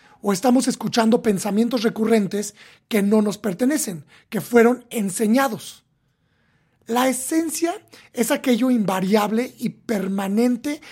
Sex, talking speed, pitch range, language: male, 105 wpm, 195-245 Hz, Spanish